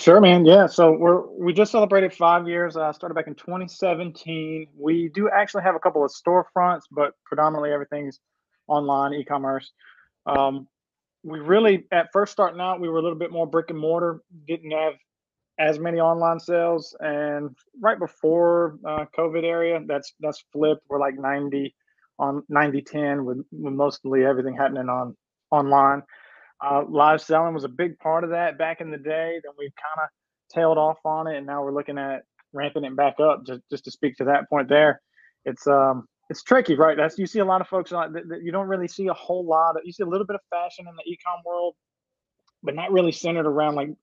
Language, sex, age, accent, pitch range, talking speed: English, male, 30-49, American, 145-175 Hz, 200 wpm